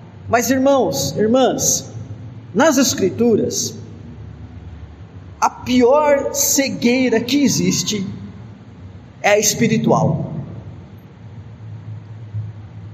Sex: male